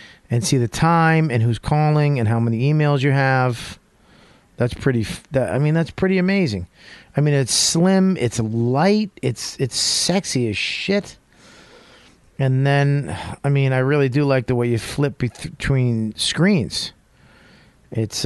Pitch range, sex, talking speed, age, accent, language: 110-160 Hz, male, 150 wpm, 40-59, American, English